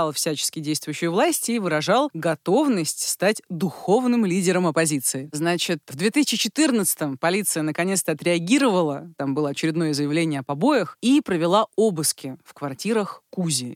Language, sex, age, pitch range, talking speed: Russian, female, 30-49, 150-215 Hz, 120 wpm